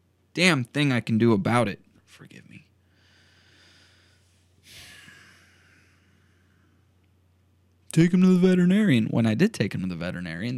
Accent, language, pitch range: American, English, 90-115 Hz